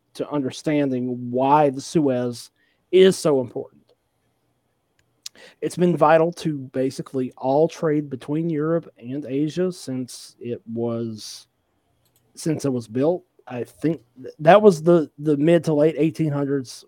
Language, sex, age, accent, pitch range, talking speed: English, male, 40-59, American, 135-170 Hz, 130 wpm